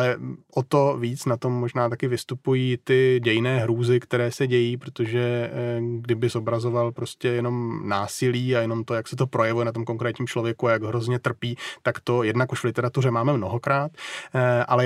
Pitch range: 120-130 Hz